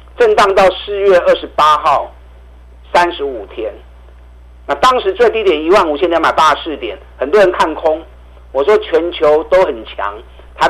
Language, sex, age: Chinese, male, 50-69